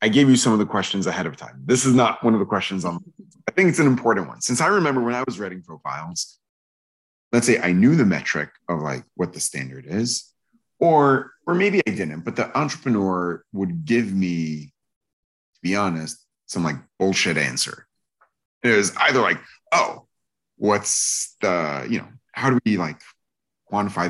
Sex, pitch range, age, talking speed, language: male, 85-125 Hz, 30-49, 190 wpm, English